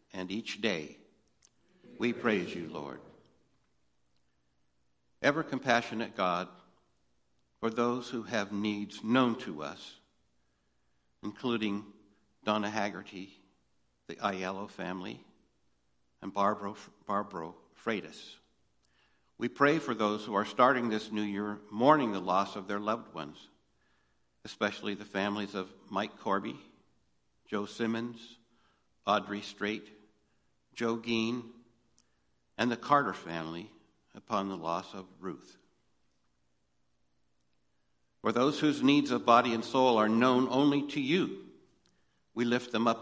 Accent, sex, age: American, male, 60-79